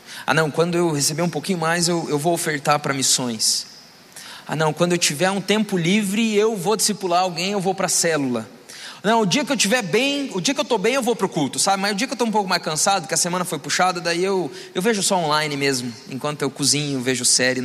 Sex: male